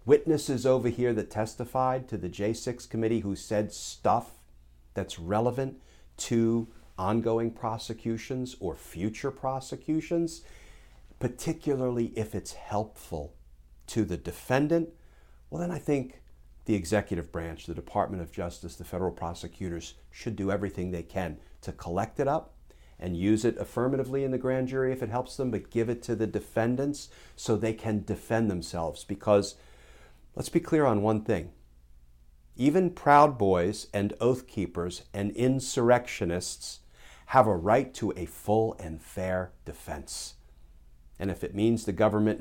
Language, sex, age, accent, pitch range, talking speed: English, male, 50-69, American, 85-120 Hz, 145 wpm